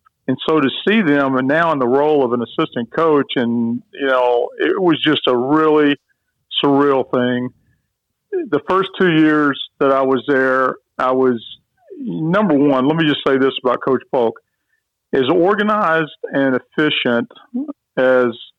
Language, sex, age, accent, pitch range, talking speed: English, male, 50-69, American, 125-150 Hz, 160 wpm